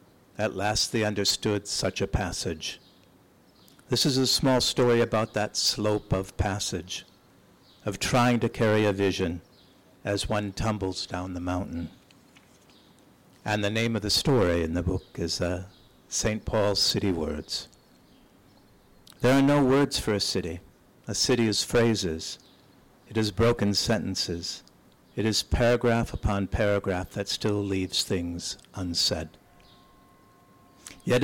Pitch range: 95-115 Hz